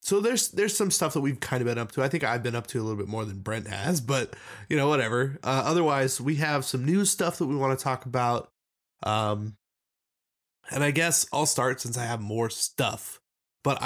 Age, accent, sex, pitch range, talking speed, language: 20-39, American, male, 110-140 Hz, 235 wpm, English